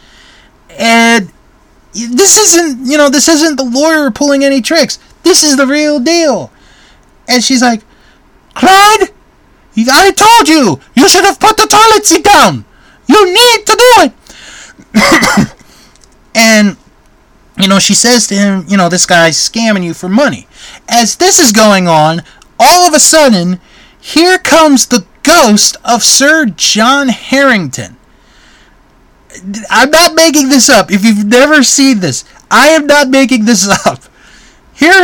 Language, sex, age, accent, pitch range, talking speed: English, male, 30-49, American, 210-295 Hz, 145 wpm